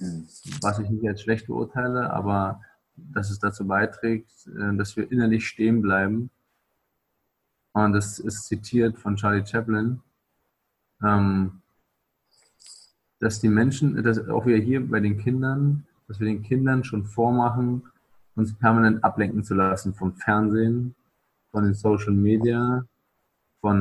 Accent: German